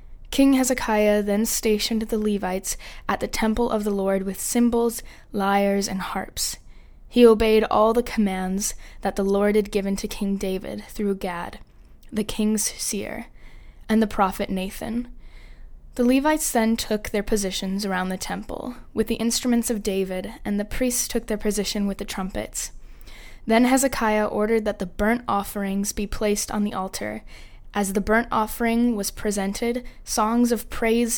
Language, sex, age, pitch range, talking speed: English, female, 10-29, 200-230 Hz, 160 wpm